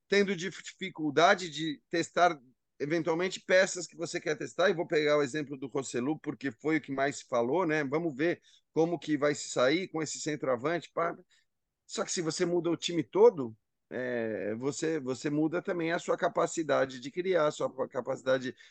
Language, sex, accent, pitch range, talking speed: Portuguese, male, Brazilian, 135-180 Hz, 180 wpm